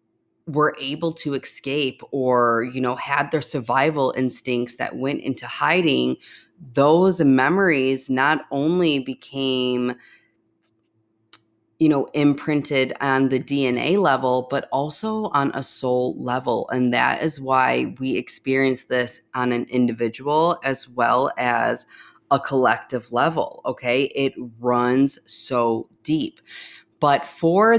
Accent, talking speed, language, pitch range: American, 120 wpm, English, 120-145 Hz